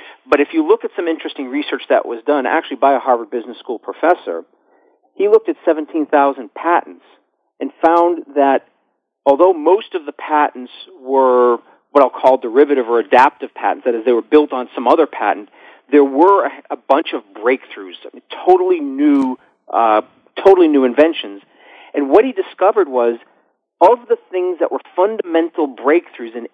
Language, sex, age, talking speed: English, male, 40-59, 165 wpm